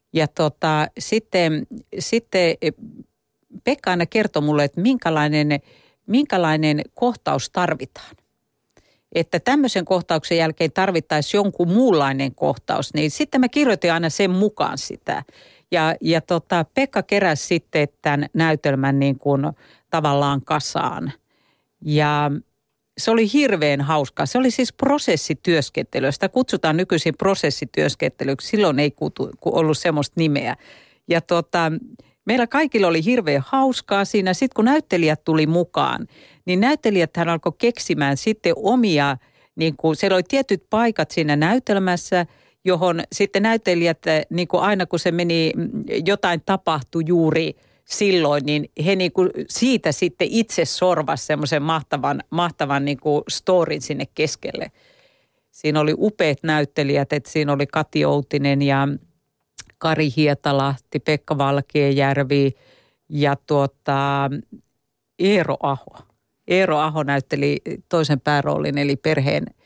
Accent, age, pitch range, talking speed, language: native, 50-69, 145-190 Hz, 120 wpm, Finnish